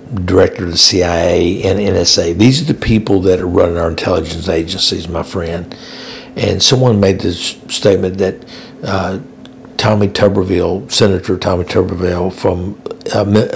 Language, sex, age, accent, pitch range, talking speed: English, male, 60-79, American, 90-105 Hz, 140 wpm